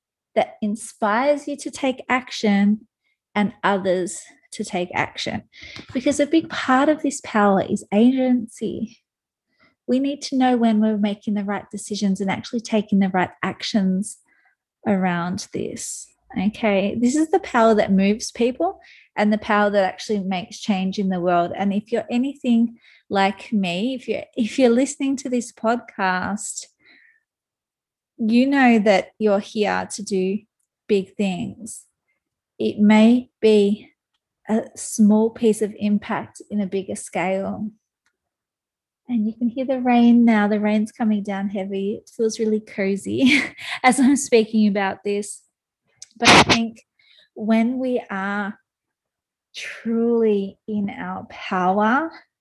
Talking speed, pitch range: 140 wpm, 200-245 Hz